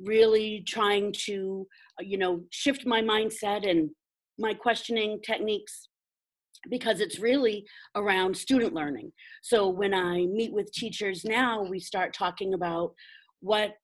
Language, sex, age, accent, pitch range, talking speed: English, female, 40-59, American, 180-225 Hz, 130 wpm